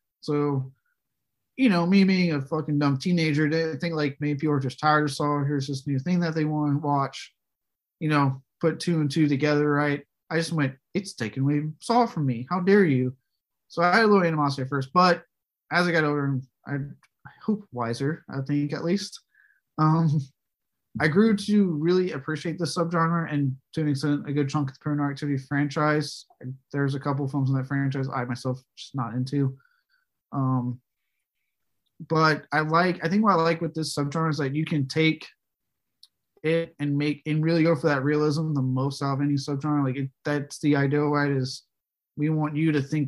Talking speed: 205 wpm